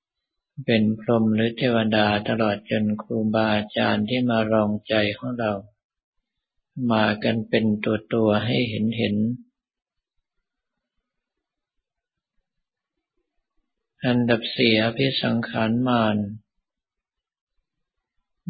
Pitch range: 110-125 Hz